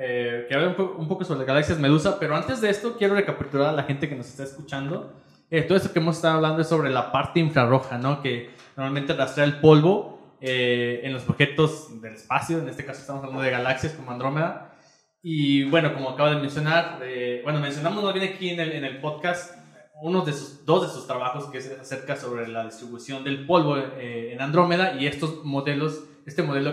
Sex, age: male, 20-39